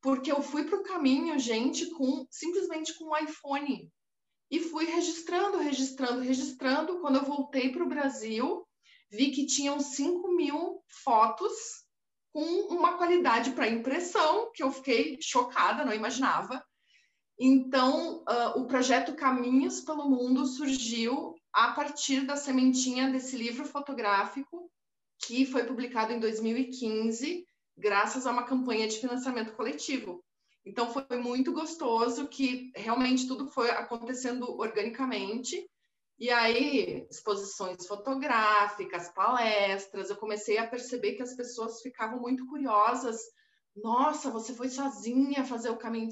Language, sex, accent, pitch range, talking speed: Spanish, female, Brazilian, 225-285 Hz, 130 wpm